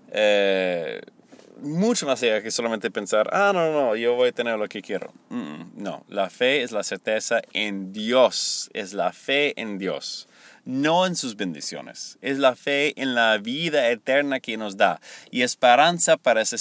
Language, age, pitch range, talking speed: Spanish, 30-49, 105-165 Hz, 175 wpm